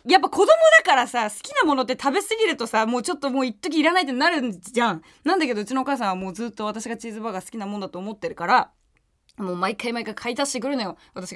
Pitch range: 205-295 Hz